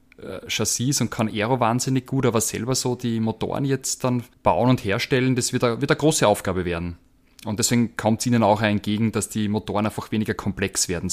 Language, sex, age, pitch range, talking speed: German, male, 20-39, 100-120 Hz, 205 wpm